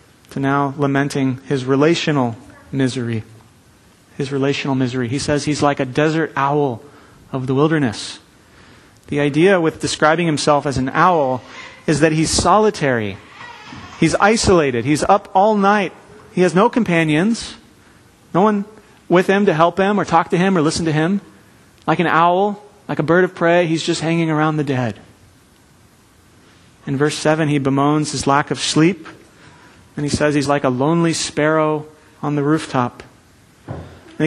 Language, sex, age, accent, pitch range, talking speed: English, male, 30-49, American, 145-210 Hz, 160 wpm